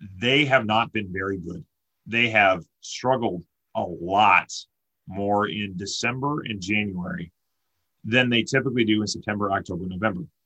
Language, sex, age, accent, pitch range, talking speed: English, male, 40-59, American, 95-115 Hz, 140 wpm